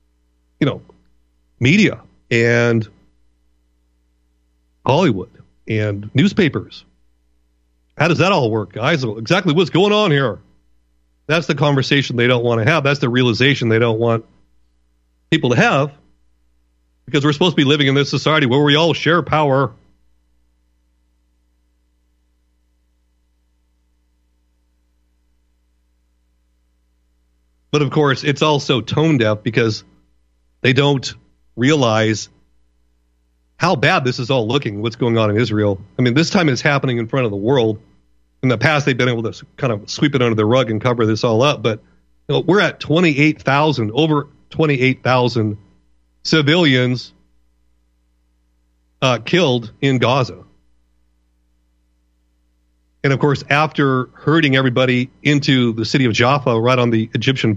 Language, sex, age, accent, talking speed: English, male, 40-59, American, 130 wpm